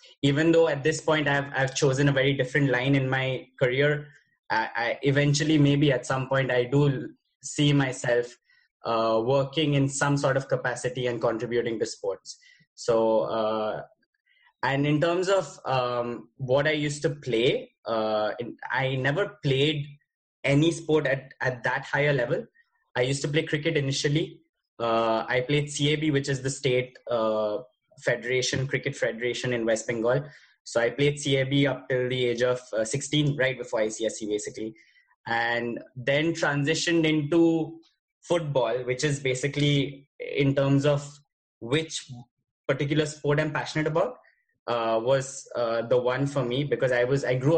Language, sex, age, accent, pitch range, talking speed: English, male, 20-39, Indian, 125-150 Hz, 160 wpm